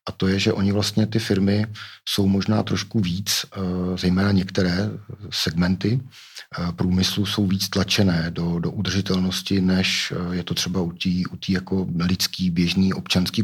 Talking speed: 145 wpm